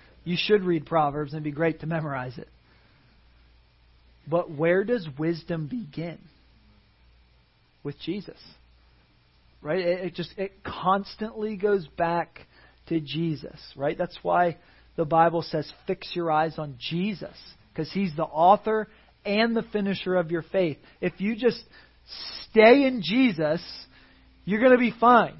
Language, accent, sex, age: English, American, male, 40-59